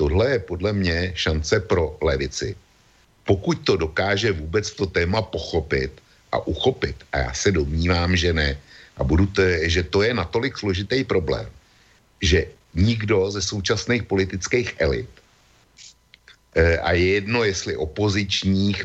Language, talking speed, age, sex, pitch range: Slovak, 125 wpm, 60-79, male, 80-95 Hz